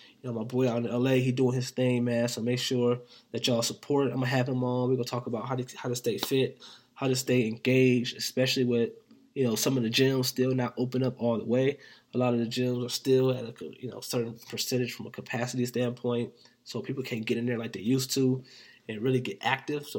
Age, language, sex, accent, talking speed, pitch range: 20-39, English, male, American, 255 wpm, 120-130 Hz